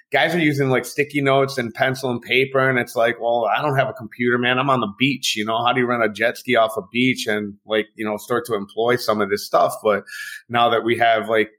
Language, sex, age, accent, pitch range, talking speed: English, male, 20-39, American, 115-135 Hz, 275 wpm